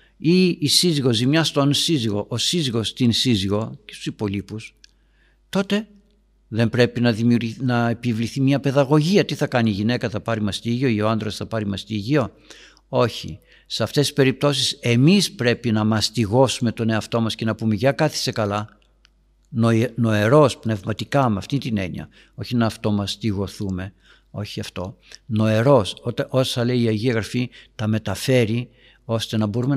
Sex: male